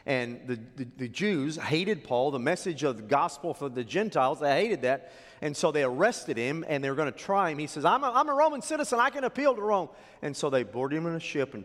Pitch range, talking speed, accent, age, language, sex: 150-240 Hz, 265 wpm, American, 40-59, English, male